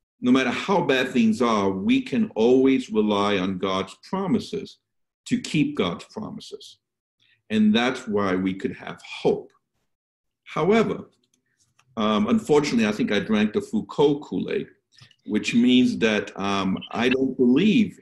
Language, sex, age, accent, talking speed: English, male, 50-69, American, 135 wpm